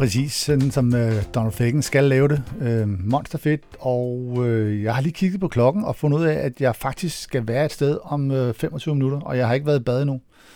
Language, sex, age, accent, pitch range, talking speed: Danish, male, 50-69, native, 110-145 Hz, 210 wpm